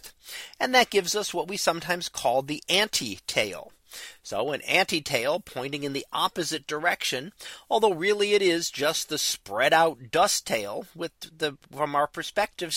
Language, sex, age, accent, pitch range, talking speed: English, male, 40-59, American, 140-185 Hz, 155 wpm